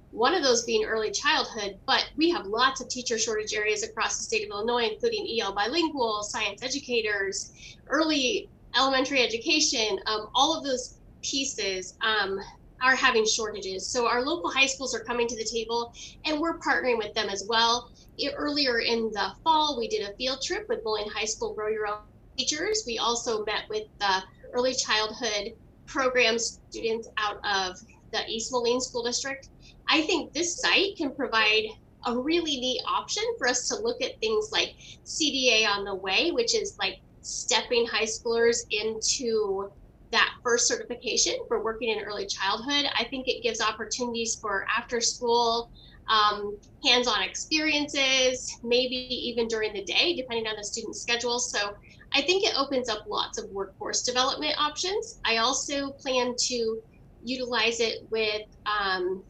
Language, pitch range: English, 220-285 Hz